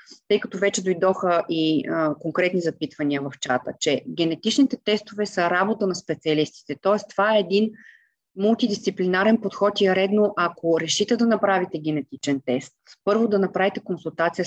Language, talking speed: Bulgarian, 150 wpm